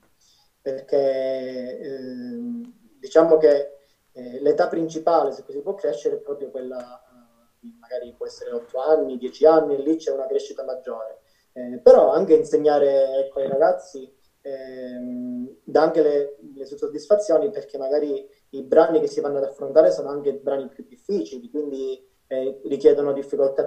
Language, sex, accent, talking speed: Italian, male, native, 145 wpm